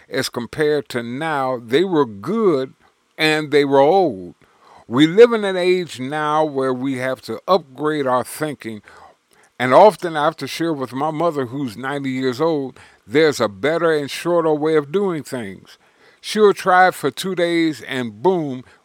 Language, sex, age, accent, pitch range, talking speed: English, male, 50-69, American, 130-170 Hz, 170 wpm